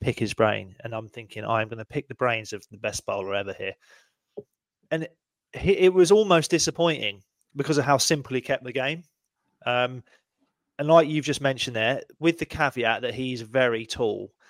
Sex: male